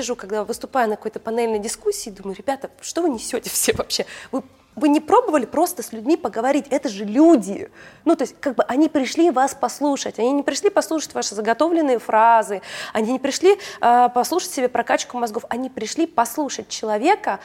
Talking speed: 180 wpm